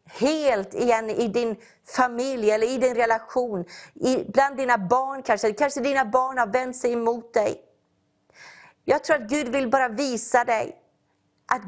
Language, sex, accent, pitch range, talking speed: English, female, Swedish, 225-290 Hz, 155 wpm